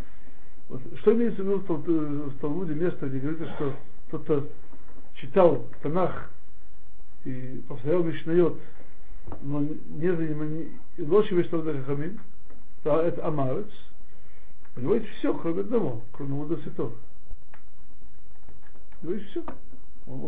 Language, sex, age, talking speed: Russian, male, 60-79, 105 wpm